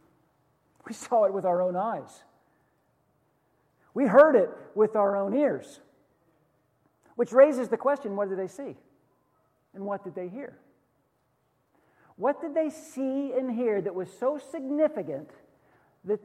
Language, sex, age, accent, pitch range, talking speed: English, male, 50-69, American, 165-240 Hz, 140 wpm